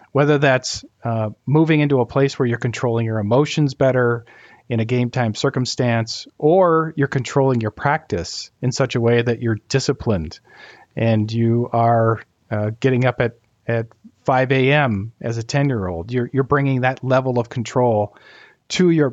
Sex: male